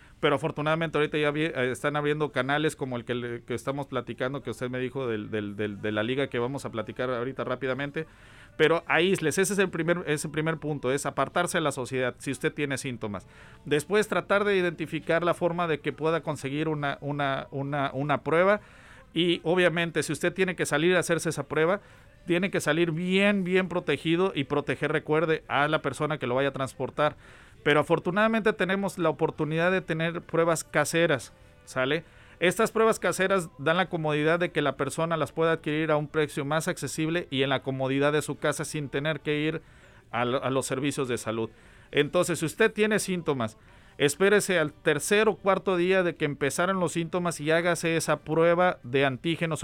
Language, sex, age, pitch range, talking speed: Spanish, male, 50-69, 135-170 Hz, 185 wpm